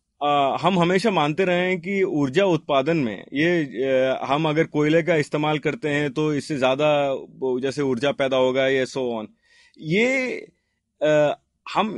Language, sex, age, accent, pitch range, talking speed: Hindi, male, 30-49, native, 145-180 Hz, 160 wpm